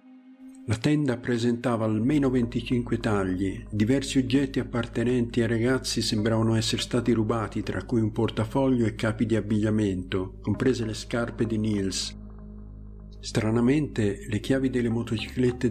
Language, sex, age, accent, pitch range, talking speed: Italian, male, 50-69, native, 105-130 Hz, 125 wpm